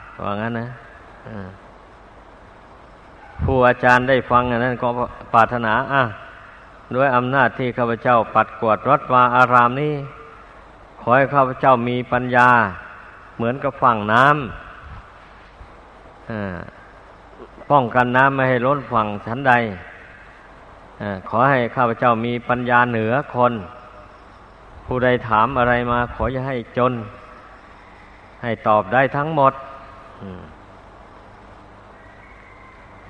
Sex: male